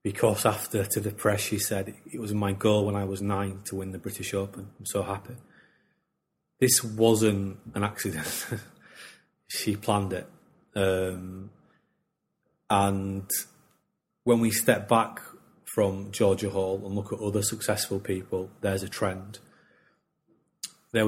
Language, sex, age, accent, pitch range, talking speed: English, male, 30-49, British, 95-110 Hz, 140 wpm